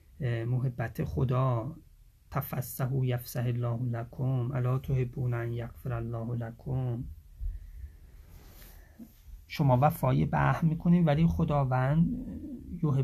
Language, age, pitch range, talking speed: English, 30-49, 125-145 Hz, 90 wpm